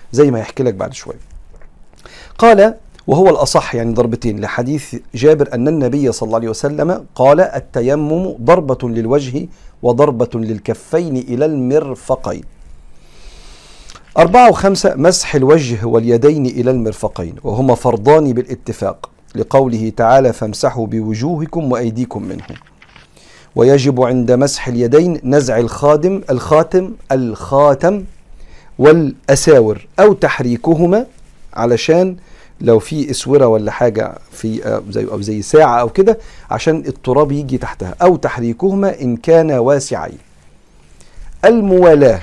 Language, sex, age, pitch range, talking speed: Arabic, male, 40-59, 115-150 Hz, 110 wpm